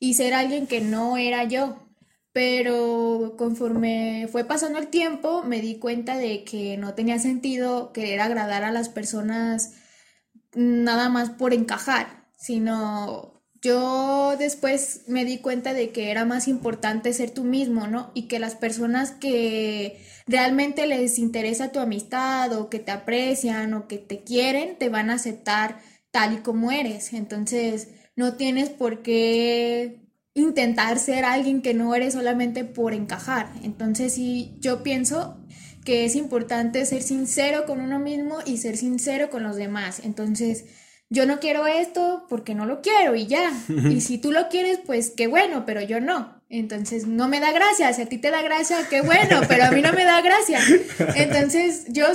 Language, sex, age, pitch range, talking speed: Spanish, female, 20-39, 230-275 Hz, 170 wpm